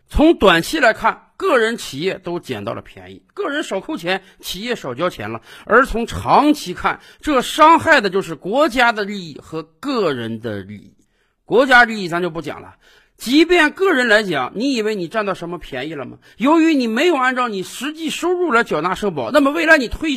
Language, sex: Chinese, male